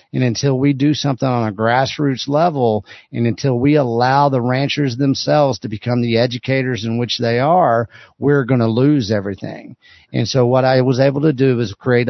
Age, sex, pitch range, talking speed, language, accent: 50-69, male, 110-135 Hz, 195 wpm, English, American